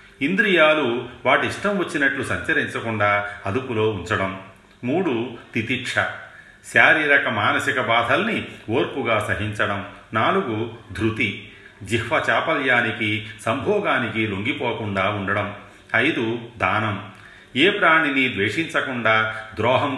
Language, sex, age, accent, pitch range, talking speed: Telugu, male, 40-59, native, 100-120 Hz, 75 wpm